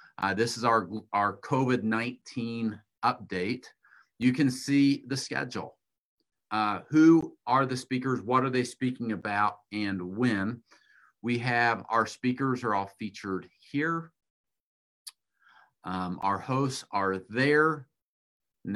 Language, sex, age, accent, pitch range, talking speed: English, male, 50-69, American, 100-125 Hz, 120 wpm